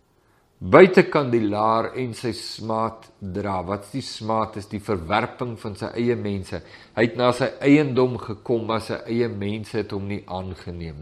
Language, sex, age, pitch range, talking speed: English, male, 50-69, 110-145 Hz, 175 wpm